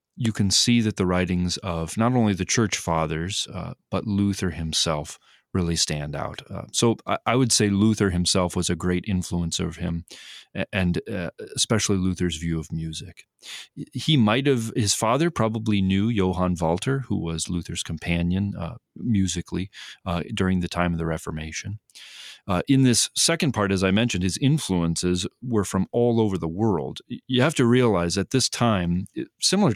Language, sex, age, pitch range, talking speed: English, male, 30-49, 85-110 Hz, 175 wpm